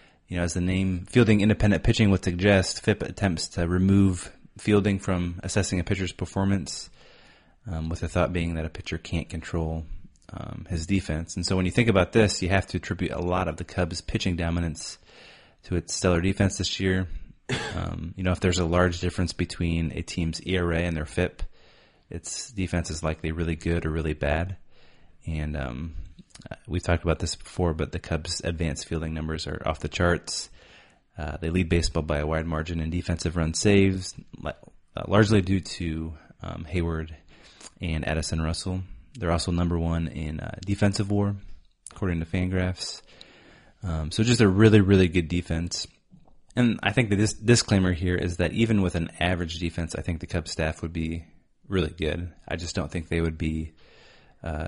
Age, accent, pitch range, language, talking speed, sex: 30-49, American, 80-95 Hz, English, 185 wpm, male